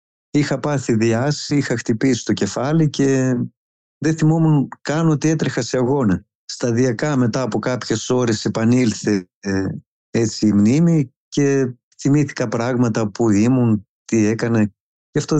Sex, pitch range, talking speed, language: male, 110-130 Hz, 135 wpm, Greek